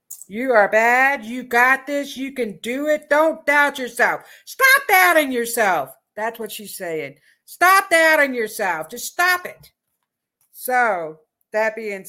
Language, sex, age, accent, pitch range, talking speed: English, female, 60-79, American, 220-285 Hz, 145 wpm